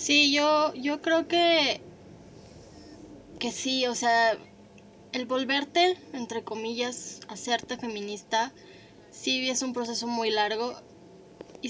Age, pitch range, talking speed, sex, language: 20-39, 220-260 Hz, 115 wpm, female, Spanish